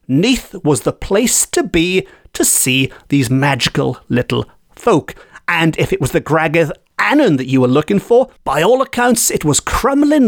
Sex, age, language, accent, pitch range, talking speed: male, 40-59, English, British, 145-225 Hz, 175 wpm